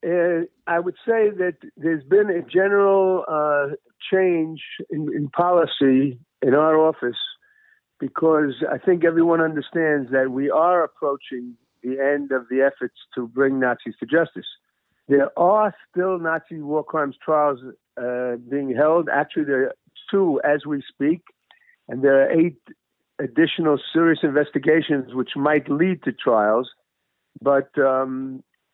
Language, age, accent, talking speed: English, 50-69, American, 140 wpm